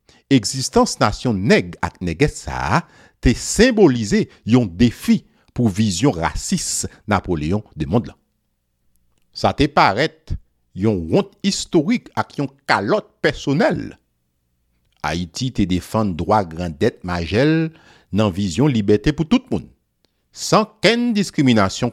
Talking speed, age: 110 wpm, 60-79